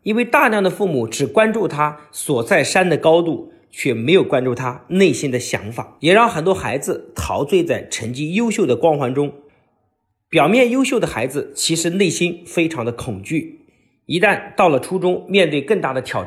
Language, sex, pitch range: Chinese, male, 125-190 Hz